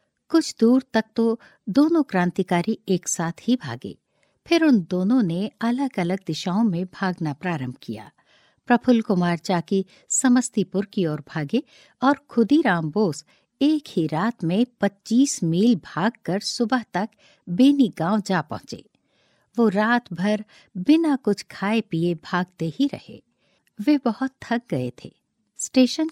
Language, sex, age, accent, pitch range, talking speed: Hindi, female, 60-79, native, 175-240 Hz, 140 wpm